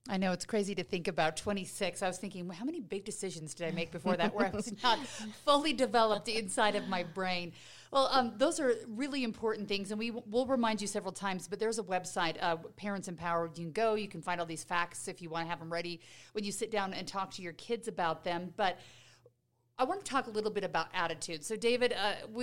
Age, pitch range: 40-59, 170-215 Hz